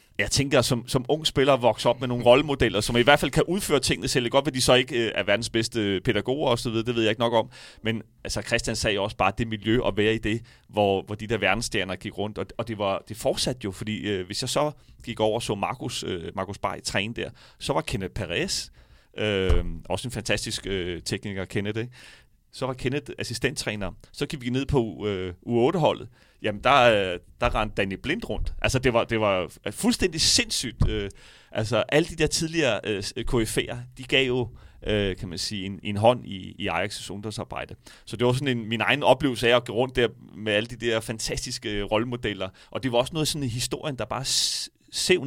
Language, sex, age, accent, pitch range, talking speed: Danish, male, 30-49, native, 105-130 Hz, 215 wpm